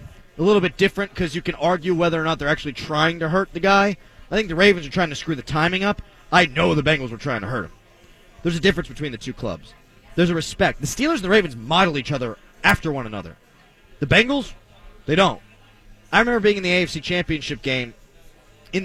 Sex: male